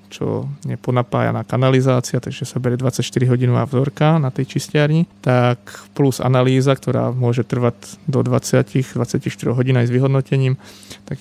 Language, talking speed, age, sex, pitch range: Slovak, 130 wpm, 30-49, male, 120-130 Hz